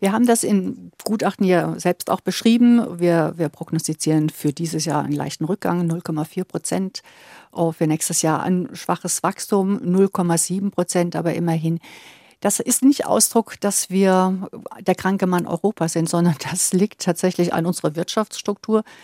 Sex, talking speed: female, 155 wpm